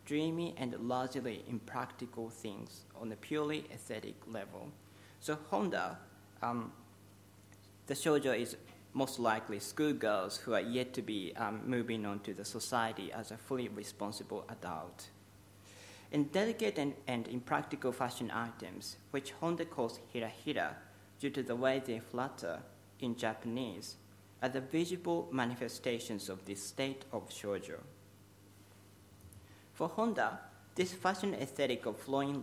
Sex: male